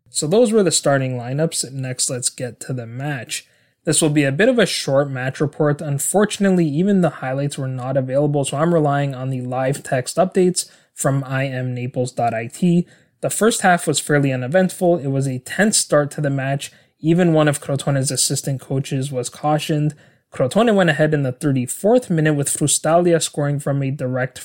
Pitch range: 130-165 Hz